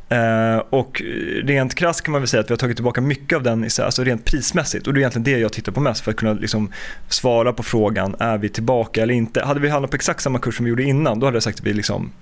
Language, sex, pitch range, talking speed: Swedish, male, 110-135 Hz, 285 wpm